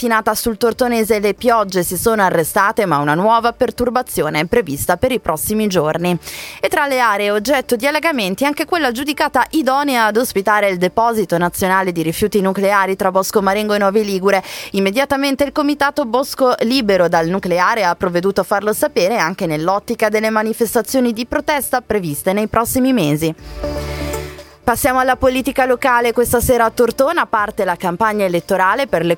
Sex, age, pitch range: female, 20-39, 185-245 Hz